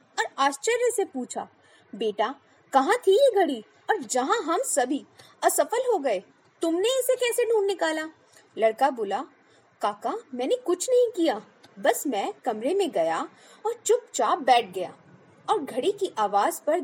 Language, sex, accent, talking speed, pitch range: Hindi, female, native, 150 wpm, 265-395 Hz